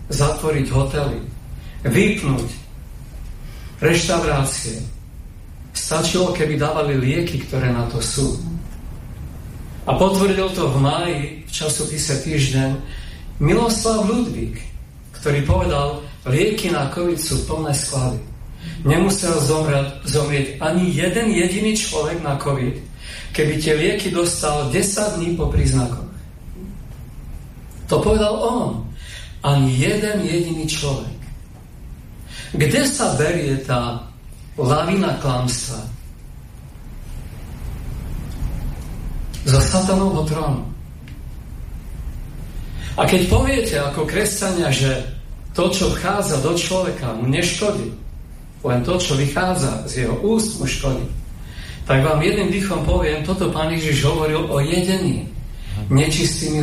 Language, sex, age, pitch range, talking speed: Slovak, male, 40-59, 130-170 Hz, 105 wpm